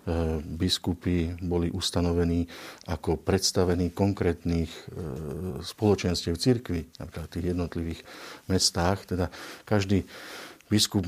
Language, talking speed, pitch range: Slovak, 85 wpm, 85-95 Hz